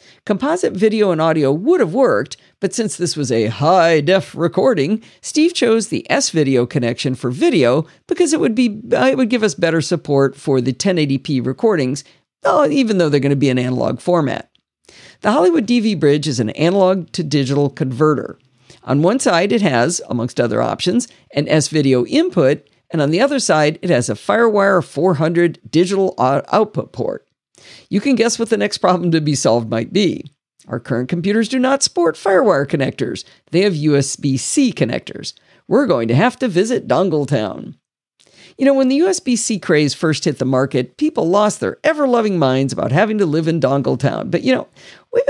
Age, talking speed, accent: 50-69, 170 wpm, American